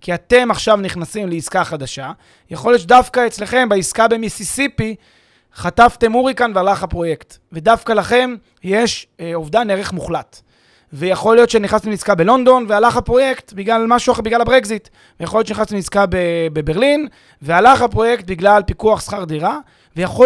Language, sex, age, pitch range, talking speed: Hebrew, male, 30-49, 165-230 Hz, 140 wpm